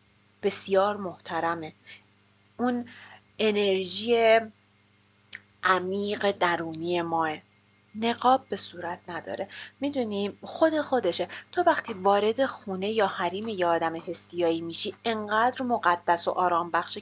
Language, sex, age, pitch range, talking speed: Persian, female, 30-49, 175-220 Hz, 100 wpm